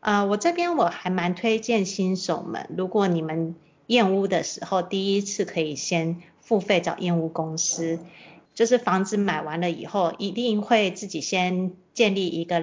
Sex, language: female, Chinese